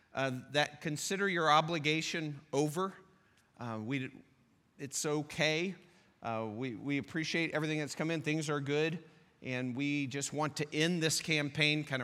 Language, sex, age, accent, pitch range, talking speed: English, male, 40-59, American, 140-160 Hz, 150 wpm